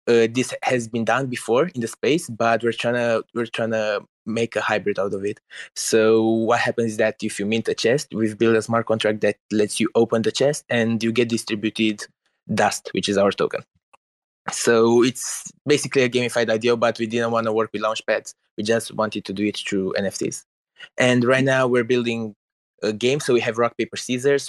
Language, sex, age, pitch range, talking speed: English, male, 20-39, 110-125 Hz, 215 wpm